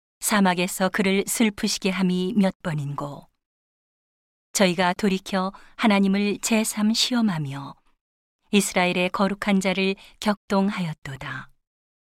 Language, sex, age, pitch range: Korean, female, 40-59, 175-205 Hz